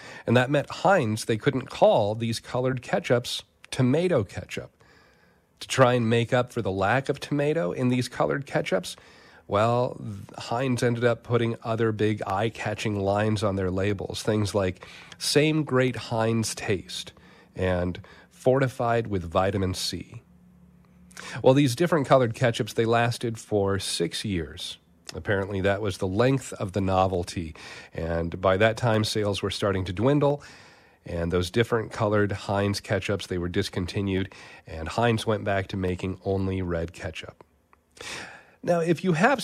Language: English